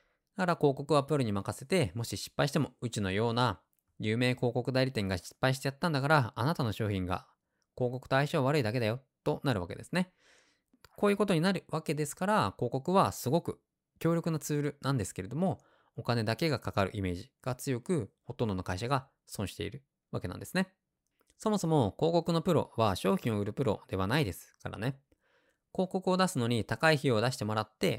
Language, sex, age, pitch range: Japanese, male, 20-39, 105-150 Hz